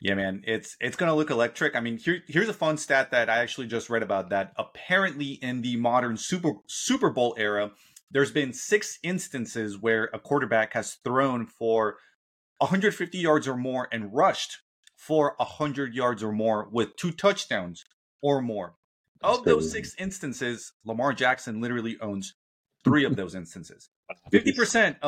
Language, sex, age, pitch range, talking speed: English, male, 30-49, 115-145 Hz, 165 wpm